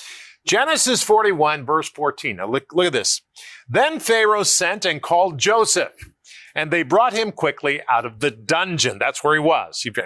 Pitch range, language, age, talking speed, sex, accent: 140-225 Hz, English, 50-69, 175 wpm, male, American